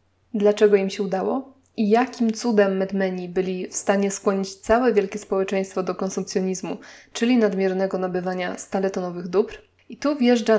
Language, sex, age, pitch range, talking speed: Polish, female, 20-39, 195-235 Hz, 140 wpm